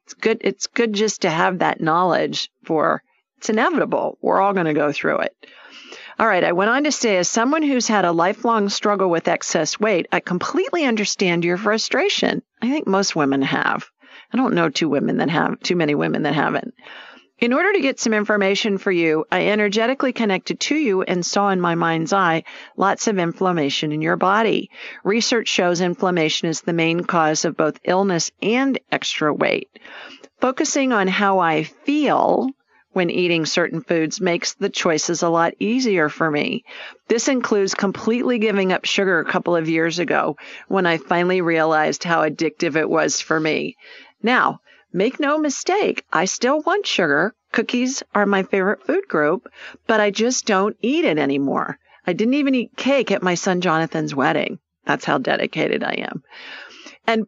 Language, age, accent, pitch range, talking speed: English, 50-69, American, 175-235 Hz, 180 wpm